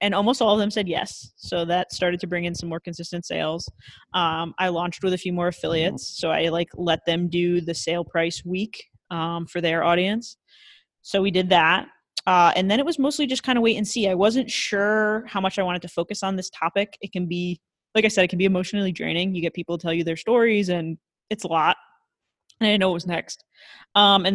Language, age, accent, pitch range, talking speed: English, 20-39, American, 175-210 Hz, 240 wpm